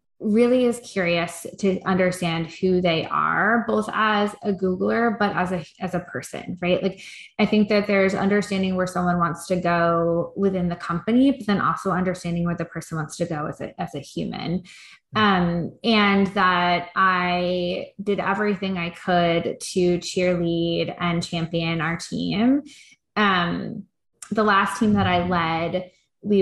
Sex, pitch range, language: female, 170-195 Hz, English